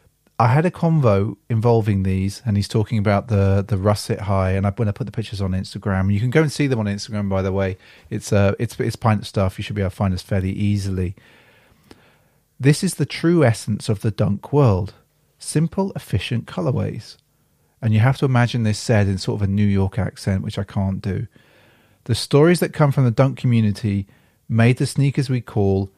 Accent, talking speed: British, 210 wpm